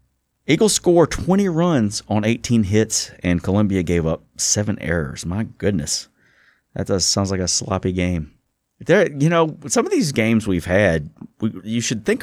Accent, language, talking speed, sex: American, English, 170 wpm, male